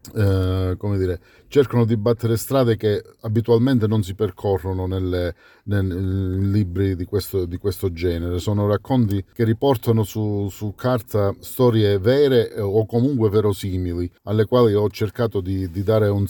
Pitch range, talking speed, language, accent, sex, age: 95-115 Hz, 145 wpm, Italian, native, male, 40-59